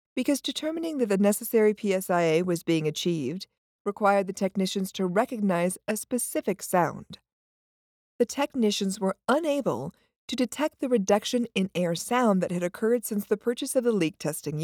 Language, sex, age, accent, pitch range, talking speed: English, female, 50-69, American, 175-245 Hz, 155 wpm